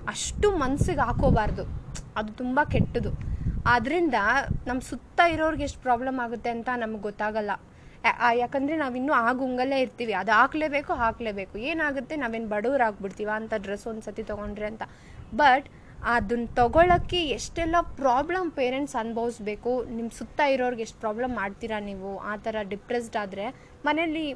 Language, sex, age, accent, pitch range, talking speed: Kannada, female, 20-39, native, 215-270 Hz, 130 wpm